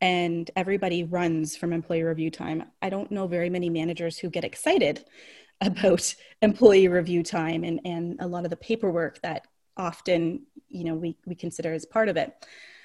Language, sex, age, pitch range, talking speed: English, female, 30-49, 175-250 Hz, 180 wpm